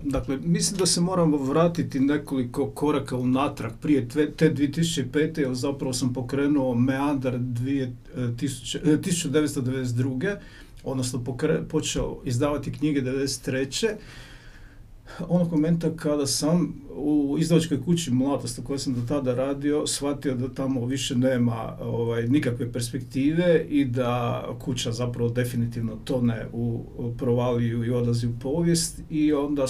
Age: 50-69